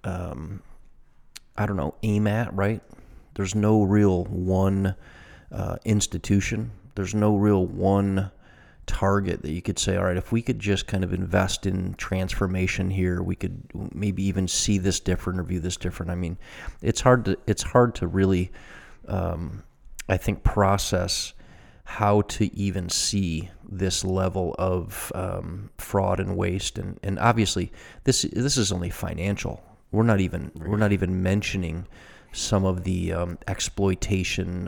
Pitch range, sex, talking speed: 90-100 Hz, male, 155 wpm